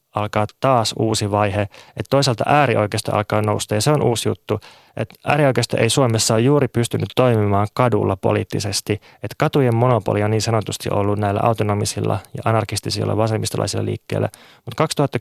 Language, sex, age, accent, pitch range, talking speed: Finnish, male, 20-39, native, 105-125 Hz, 155 wpm